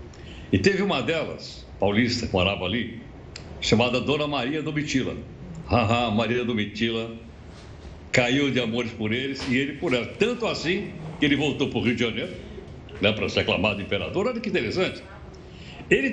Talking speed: 160 wpm